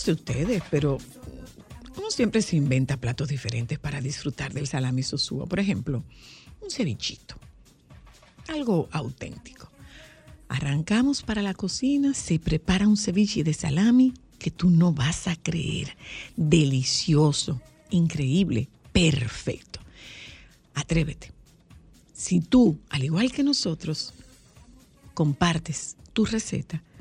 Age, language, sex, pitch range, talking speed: 50-69, Spanish, female, 145-225 Hz, 110 wpm